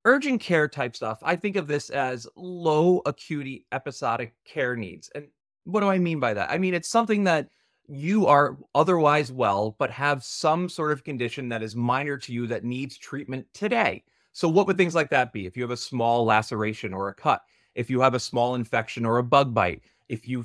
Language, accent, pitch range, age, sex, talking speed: English, American, 120-150 Hz, 30-49, male, 215 wpm